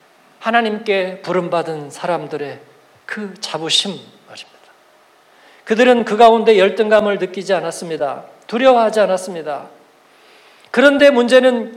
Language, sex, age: Korean, male, 40-59